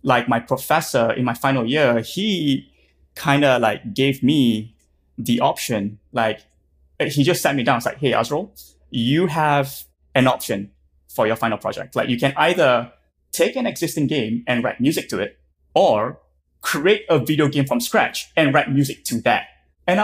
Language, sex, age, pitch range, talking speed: English, male, 20-39, 115-150 Hz, 180 wpm